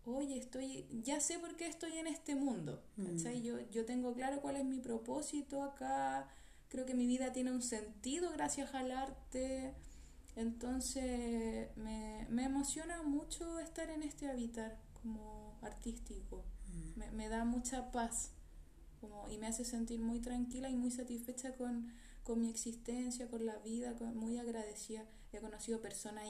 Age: 20-39